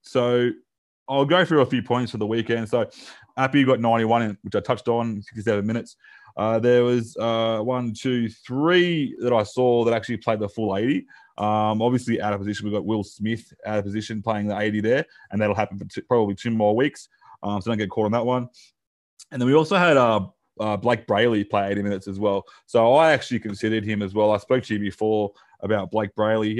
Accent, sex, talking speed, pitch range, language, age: Australian, male, 225 wpm, 105-120 Hz, English, 20-39